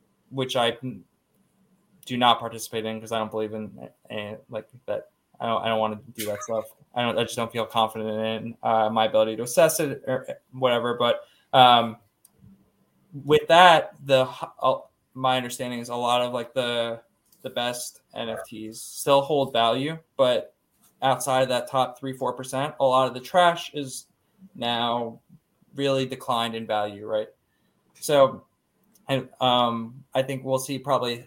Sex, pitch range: male, 115-130 Hz